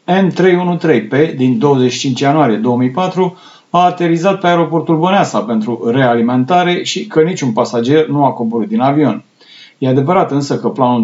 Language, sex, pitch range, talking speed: Romanian, male, 120-160 Hz, 140 wpm